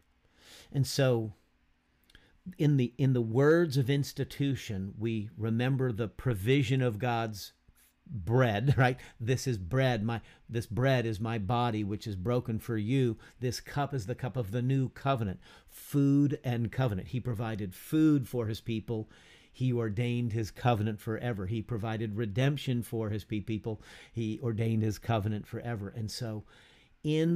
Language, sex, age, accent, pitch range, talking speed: English, male, 50-69, American, 105-130 Hz, 150 wpm